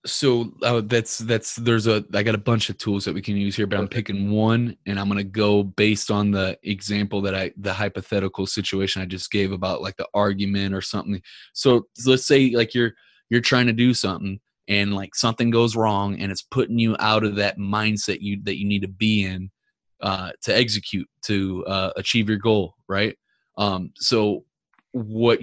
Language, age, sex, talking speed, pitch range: English, 20-39, male, 205 wpm, 100-115 Hz